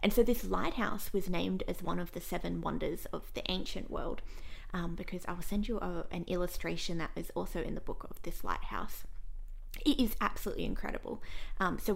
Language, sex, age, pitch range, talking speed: English, female, 20-39, 175-210 Hz, 200 wpm